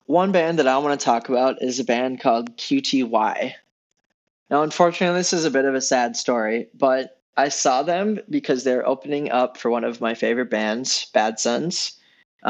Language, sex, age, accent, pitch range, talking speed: English, male, 20-39, American, 120-155 Hz, 190 wpm